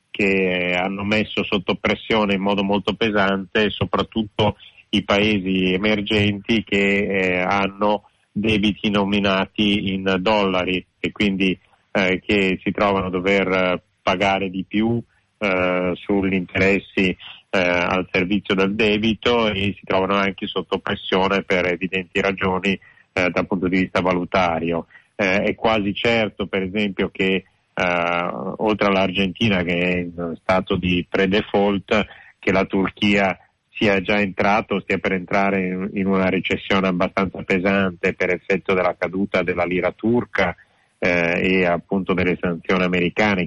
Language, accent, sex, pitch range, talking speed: Italian, native, male, 90-100 Hz, 135 wpm